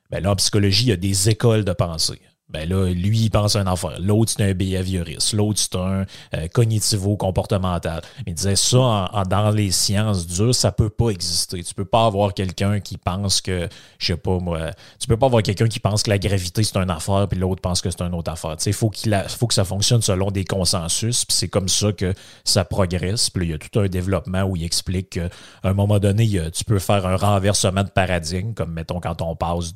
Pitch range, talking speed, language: 90-105 Hz, 240 wpm, French